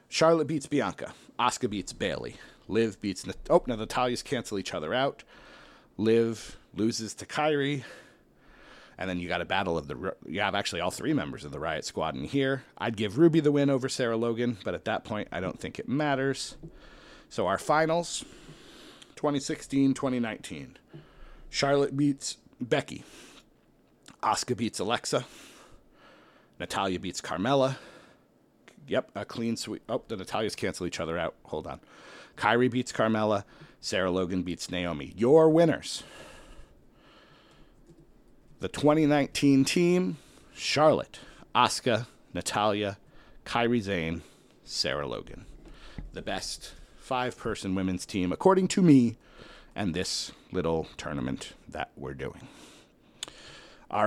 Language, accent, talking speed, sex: English, American, 135 wpm, male